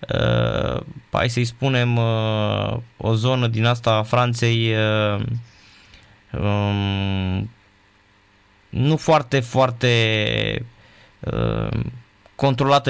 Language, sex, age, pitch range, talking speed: Romanian, male, 20-39, 105-130 Hz, 85 wpm